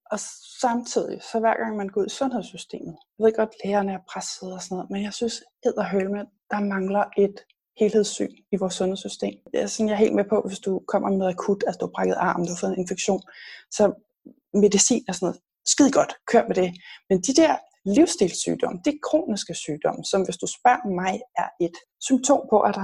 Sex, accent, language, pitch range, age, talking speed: female, native, Danish, 195-245 Hz, 20-39, 215 wpm